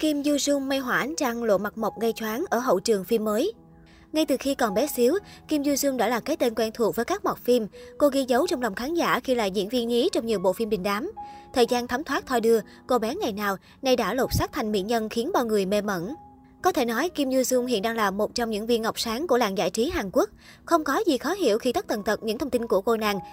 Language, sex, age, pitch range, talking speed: Vietnamese, male, 20-39, 220-270 Hz, 285 wpm